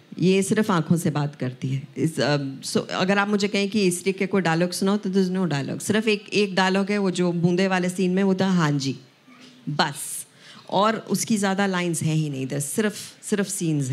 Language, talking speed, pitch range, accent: Hindi, 205 wpm, 155-195 Hz, native